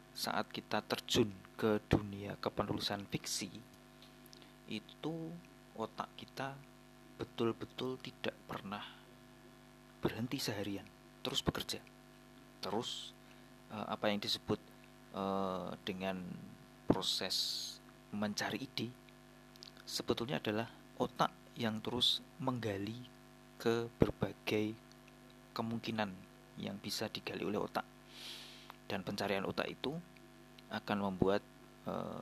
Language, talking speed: Indonesian, 85 wpm